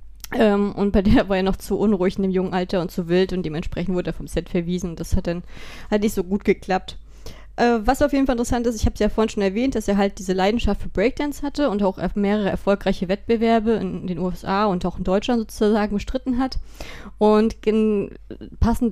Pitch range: 185-220 Hz